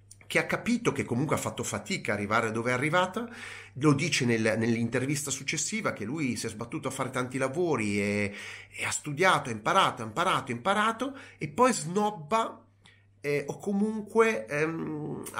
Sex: male